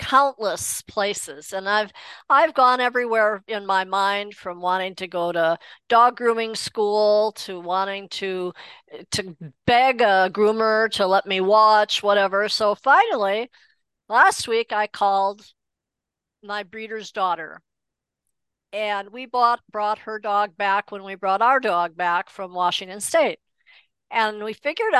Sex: female